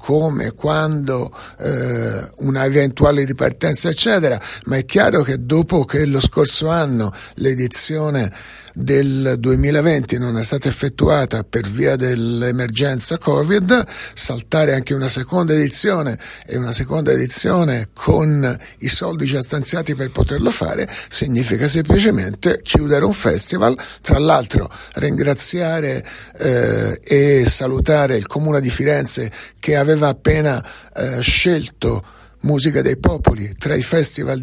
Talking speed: 125 wpm